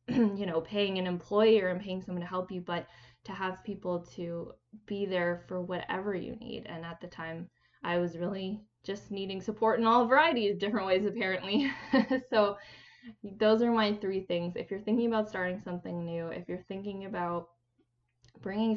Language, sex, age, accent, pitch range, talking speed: English, female, 10-29, American, 175-210 Hz, 180 wpm